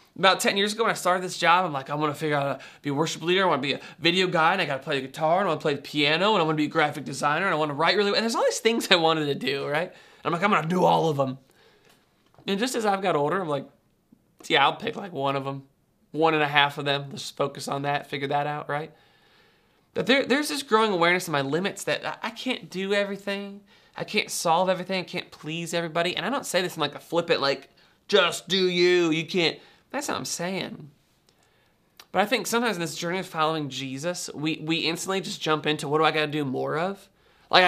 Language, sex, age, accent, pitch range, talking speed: English, male, 20-39, American, 145-185 Hz, 275 wpm